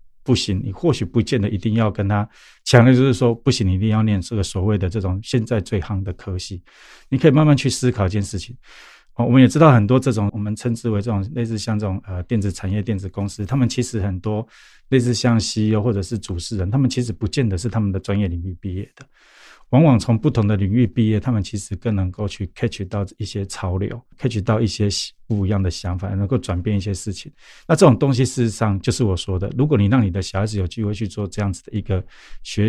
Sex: male